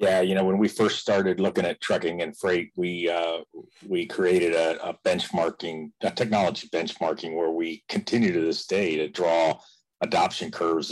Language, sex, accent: English, male, American